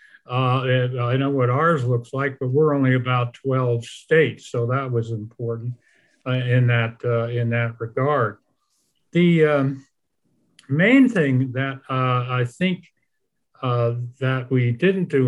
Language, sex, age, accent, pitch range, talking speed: English, male, 50-69, American, 120-145 Hz, 145 wpm